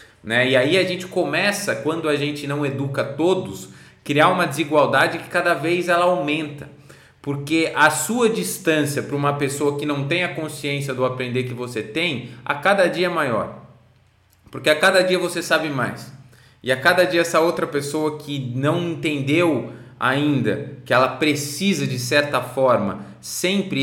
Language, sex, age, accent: Portuguese, male, 20-39, Brazilian